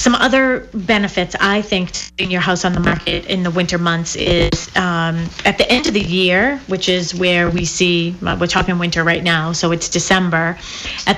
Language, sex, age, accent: English, female, 30-49, American